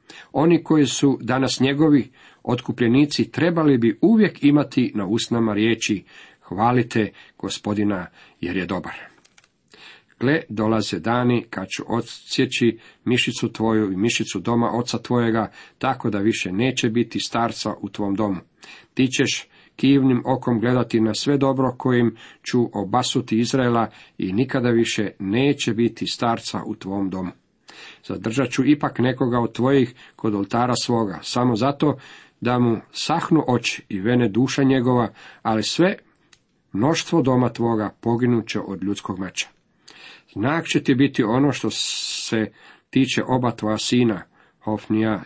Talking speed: 135 wpm